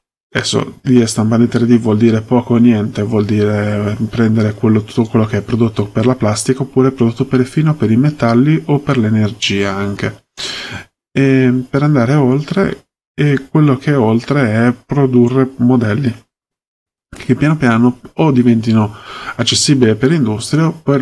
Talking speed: 150 wpm